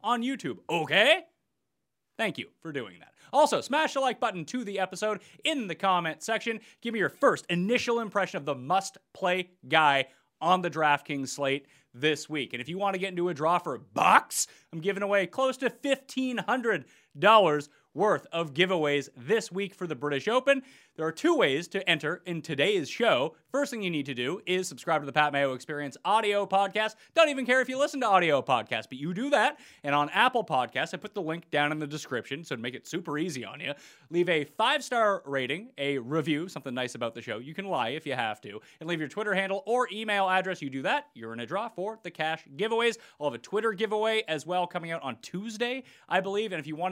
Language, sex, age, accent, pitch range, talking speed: English, male, 30-49, American, 150-220 Hz, 225 wpm